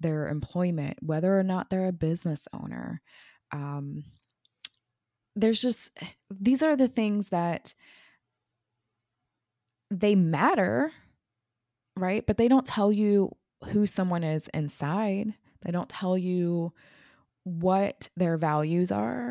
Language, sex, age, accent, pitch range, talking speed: English, female, 20-39, American, 150-185 Hz, 115 wpm